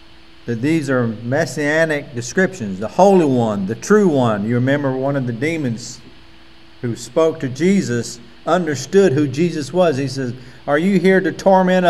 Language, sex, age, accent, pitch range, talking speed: English, male, 50-69, American, 125-165 Hz, 160 wpm